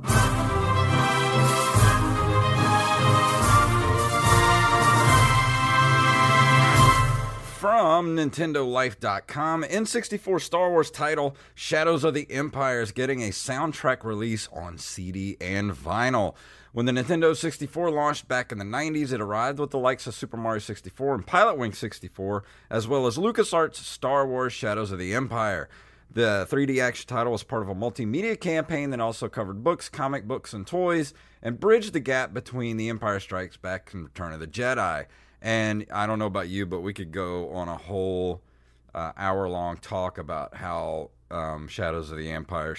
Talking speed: 150 wpm